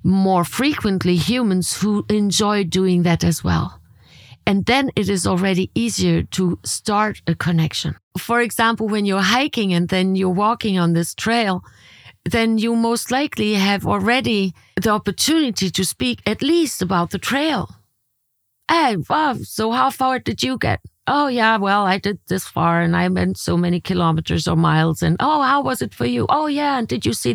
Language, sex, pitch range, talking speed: English, female, 170-220 Hz, 180 wpm